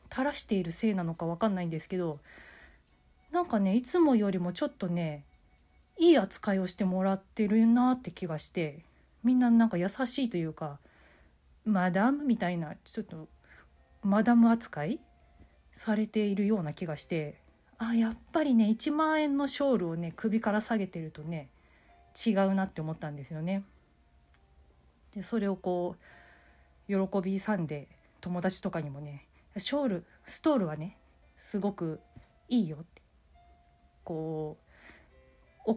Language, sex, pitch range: Japanese, female, 150-220 Hz